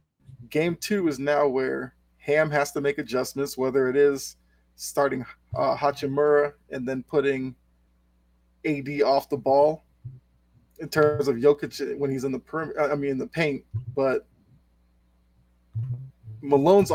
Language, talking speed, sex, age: English, 140 wpm, male, 20-39